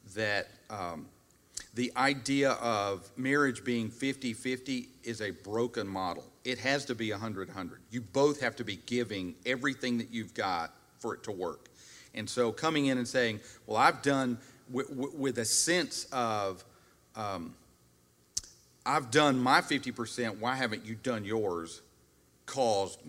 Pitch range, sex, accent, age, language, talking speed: 100-130 Hz, male, American, 40-59, English, 145 wpm